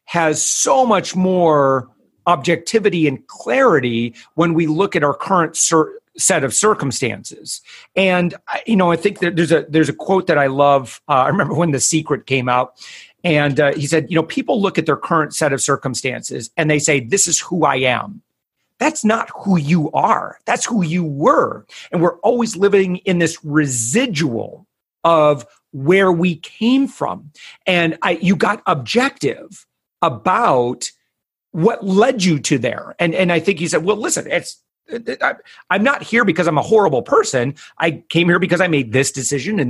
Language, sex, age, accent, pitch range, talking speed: English, male, 40-59, American, 150-200 Hz, 185 wpm